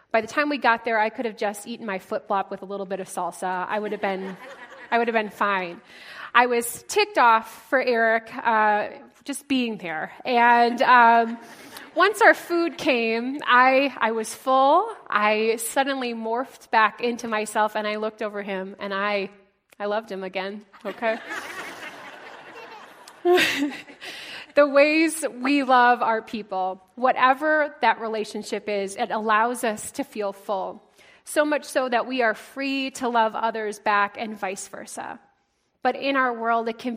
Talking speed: 165 wpm